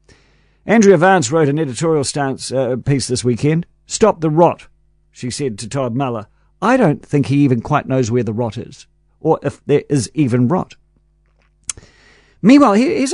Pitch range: 130-170 Hz